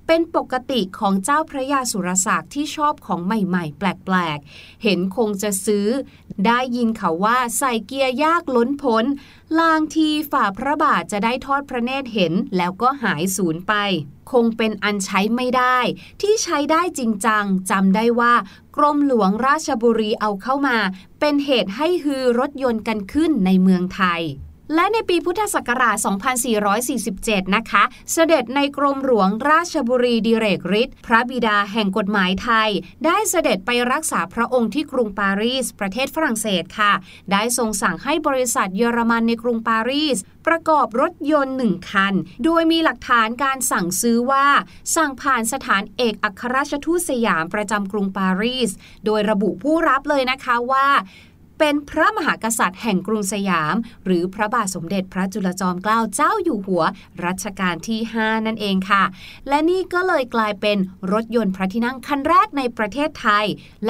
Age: 20-39